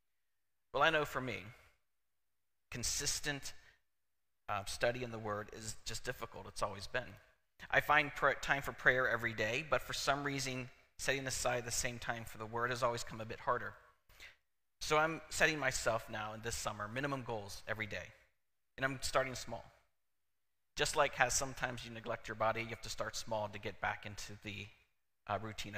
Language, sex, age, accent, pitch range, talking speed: English, male, 30-49, American, 105-130 Hz, 185 wpm